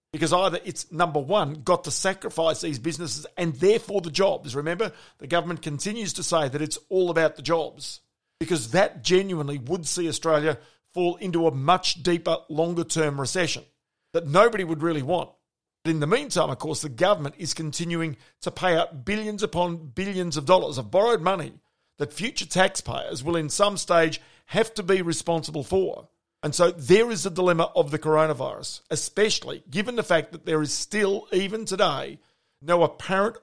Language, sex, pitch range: English, male, 155-185 Hz